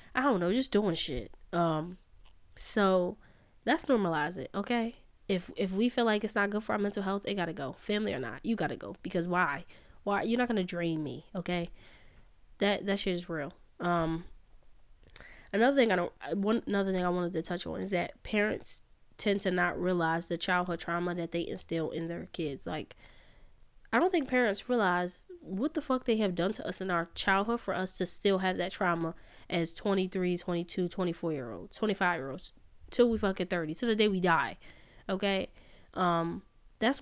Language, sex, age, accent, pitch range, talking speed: English, female, 10-29, American, 170-205 Hz, 190 wpm